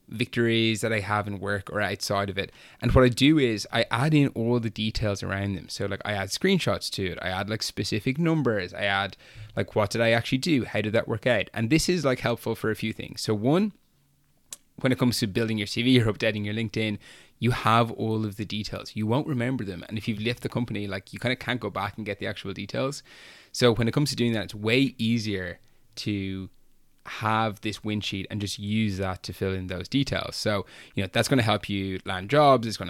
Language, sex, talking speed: English, male, 245 wpm